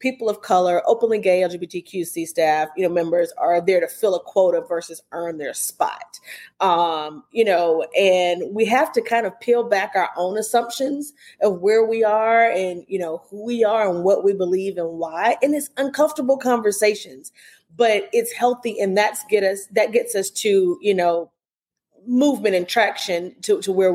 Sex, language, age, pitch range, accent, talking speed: female, English, 30-49, 180-225 Hz, American, 185 wpm